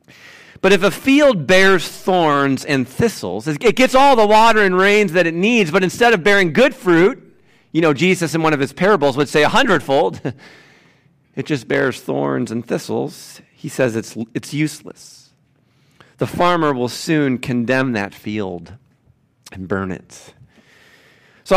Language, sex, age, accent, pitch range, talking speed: English, male, 40-59, American, 115-170 Hz, 160 wpm